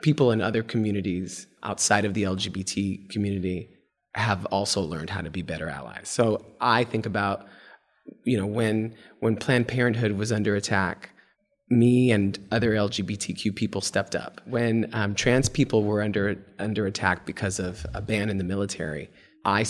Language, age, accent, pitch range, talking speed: English, 20-39, American, 100-125 Hz, 160 wpm